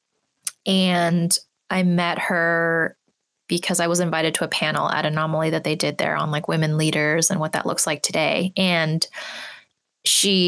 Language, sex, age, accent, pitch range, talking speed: English, female, 20-39, American, 165-190 Hz, 165 wpm